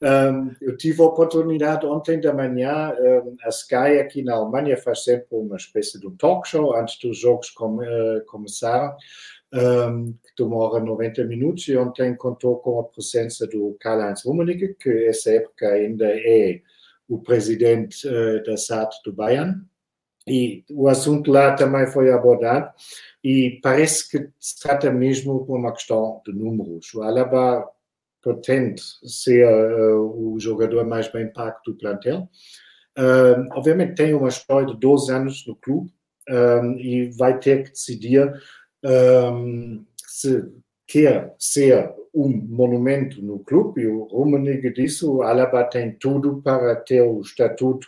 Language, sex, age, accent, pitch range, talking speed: Portuguese, male, 50-69, German, 115-140 Hz, 145 wpm